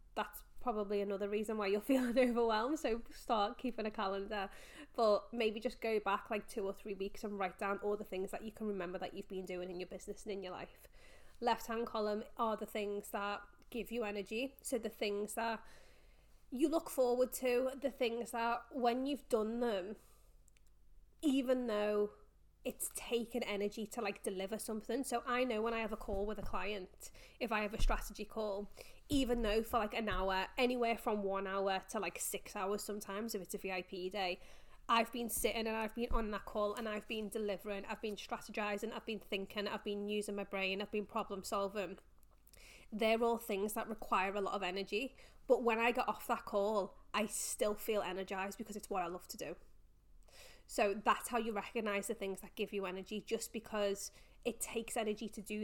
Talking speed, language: 200 wpm, English